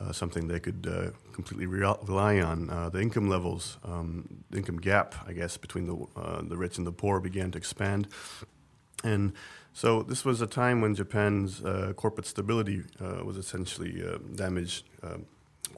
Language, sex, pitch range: English, male, 90-105 Hz